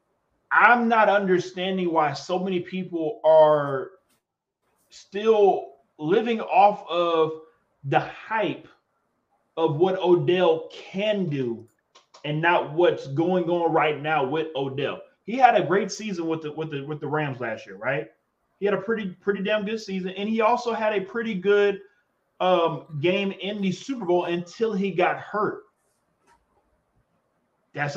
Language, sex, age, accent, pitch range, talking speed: English, male, 20-39, American, 150-195 Hz, 150 wpm